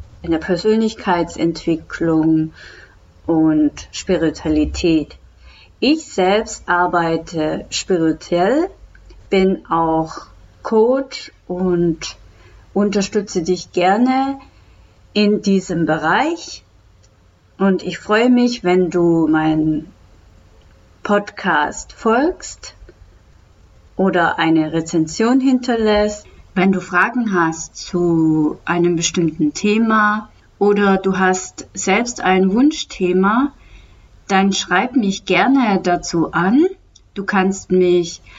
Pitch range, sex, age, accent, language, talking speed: 160-210 Hz, female, 30-49, German, German, 85 wpm